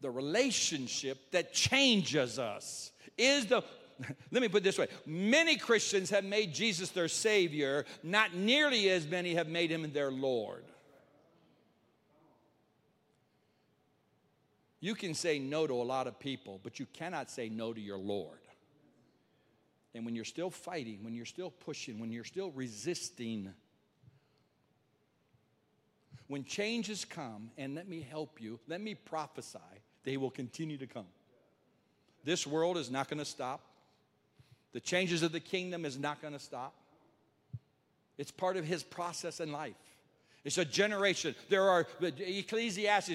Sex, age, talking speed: male, 60-79, 145 wpm